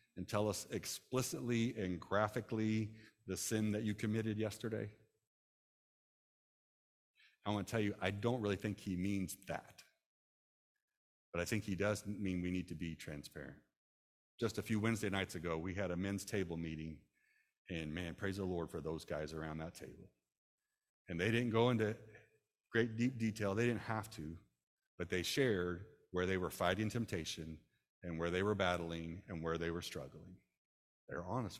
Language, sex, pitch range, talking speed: English, male, 90-120 Hz, 170 wpm